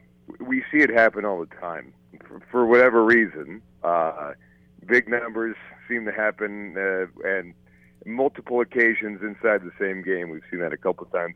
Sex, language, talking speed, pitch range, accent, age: male, English, 170 wpm, 85-115 Hz, American, 40-59